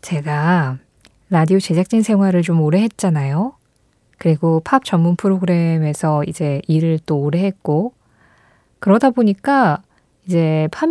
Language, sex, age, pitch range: Korean, female, 20-39, 170-240 Hz